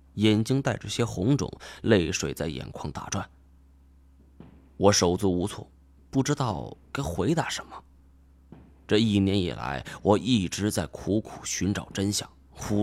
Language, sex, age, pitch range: Chinese, male, 20-39, 70-115 Hz